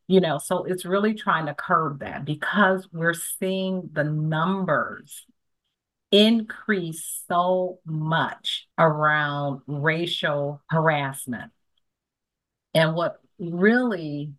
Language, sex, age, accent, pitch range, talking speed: English, female, 40-59, American, 150-185 Hz, 95 wpm